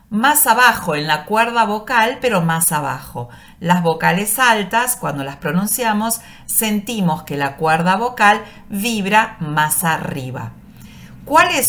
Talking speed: 125 wpm